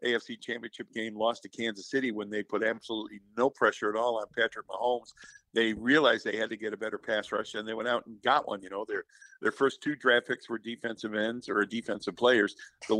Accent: American